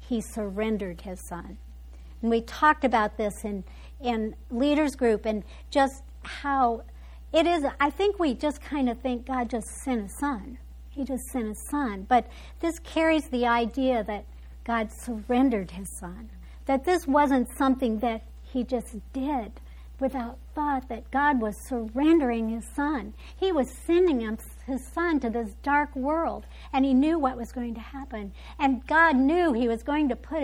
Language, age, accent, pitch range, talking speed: English, 60-79, American, 230-295 Hz, 170 wpm